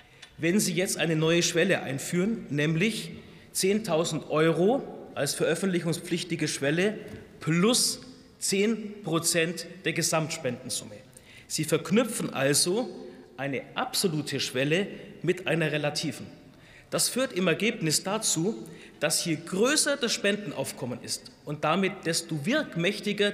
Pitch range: 160-210 Hz